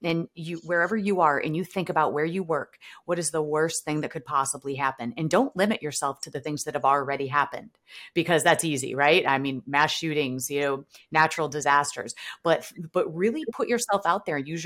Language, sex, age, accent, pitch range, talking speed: English, female, 30-49, American, 145-175 Hz, 215 wpm